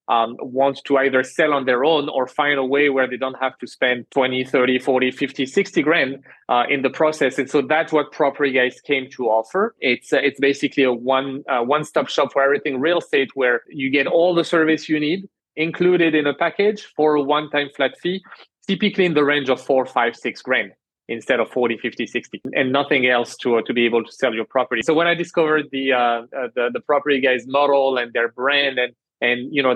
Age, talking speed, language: 30-49, 225 wpm, English